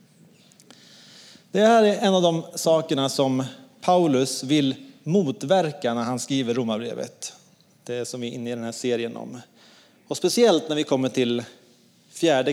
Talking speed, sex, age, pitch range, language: 160 wpm, male, 30-49, 130-180 Hz, English